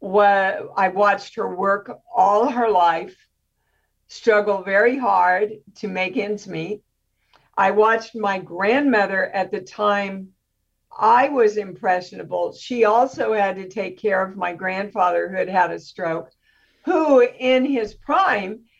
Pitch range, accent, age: 190-235 Hz, American, 60-79